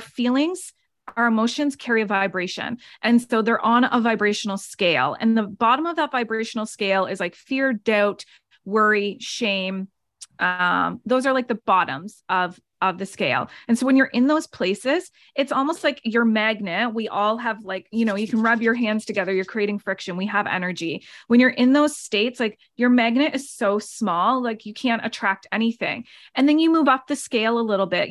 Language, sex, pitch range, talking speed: English, female, 205-255 Hz, 195 wpm